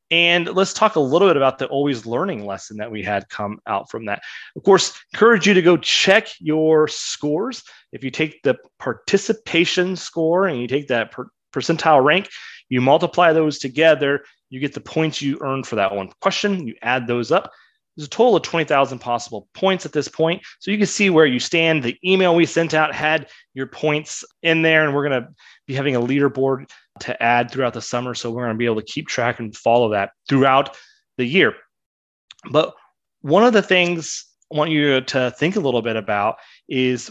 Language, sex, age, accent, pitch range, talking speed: English, male, 30-49, American, 120-165 Hz, 205 wpm